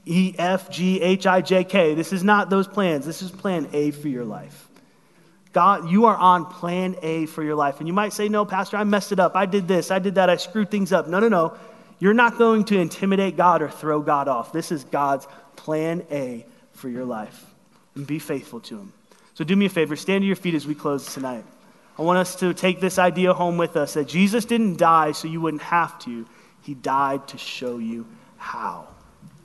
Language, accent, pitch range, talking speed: English, American, 150-190 Hz, 215 wpm